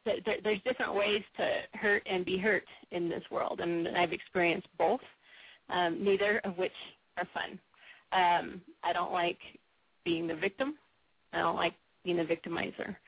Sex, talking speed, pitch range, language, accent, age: female, 155 wpm, 175-205 Hz, English, American, 30-49